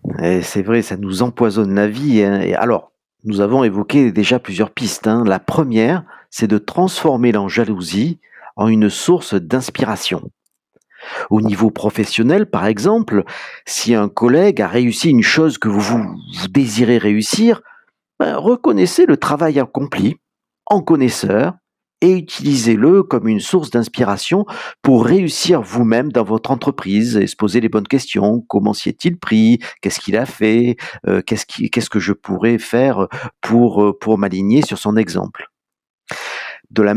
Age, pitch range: 50-69, 105-150 Hz